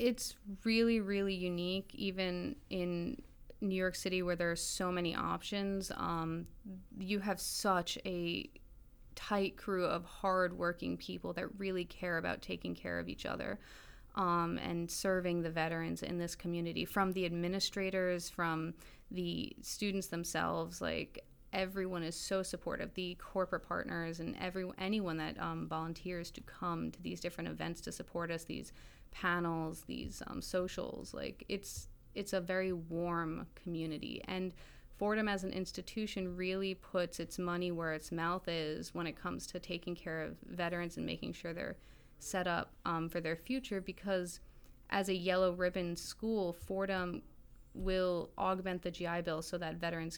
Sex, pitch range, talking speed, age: female, 165-190 Hz, 155 wpm, 20-39